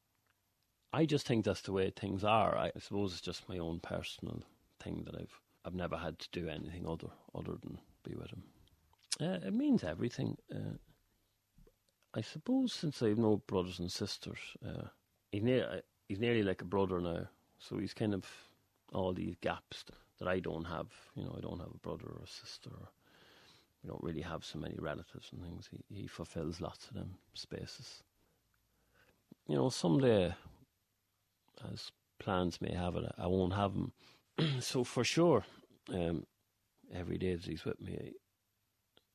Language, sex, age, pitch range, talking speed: English, male, 40-59, 90-115 Hz, 175 wpm